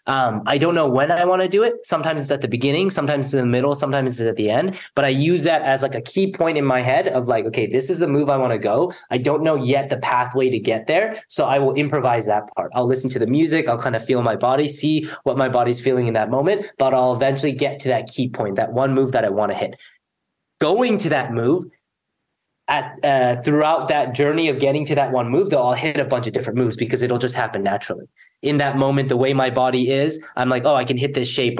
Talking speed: 270 wpm